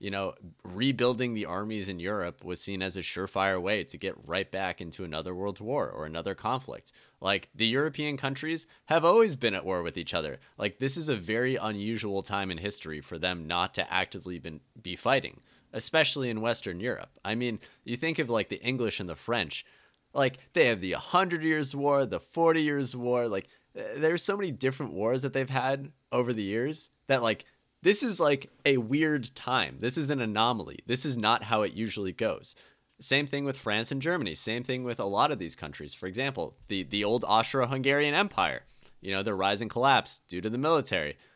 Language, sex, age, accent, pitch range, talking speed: English, male, 30-49, American, 95-135 Hz, 205 wpm